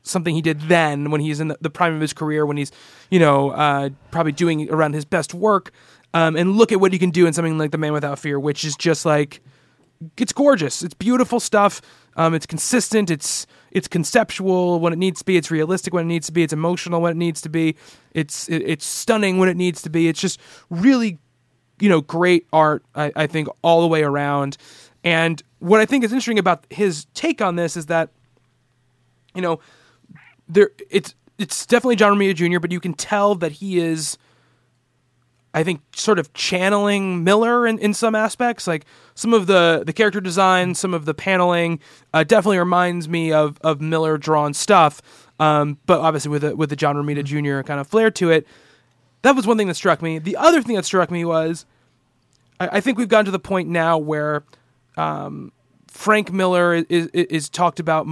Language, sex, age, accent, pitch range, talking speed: English, male, 20-39, American, 150-190 Hz, 205 wpm